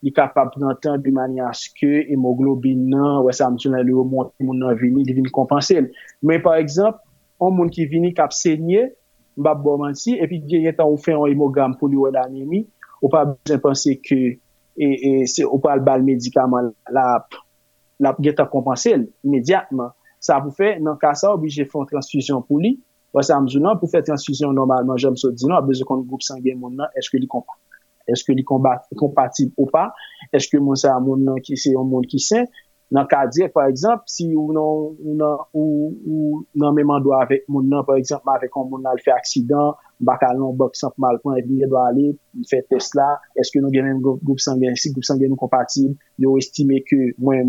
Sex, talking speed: male, 180 wpm